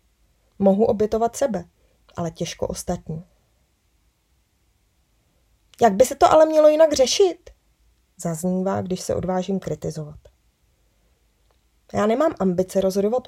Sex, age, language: female, 20-39, Czech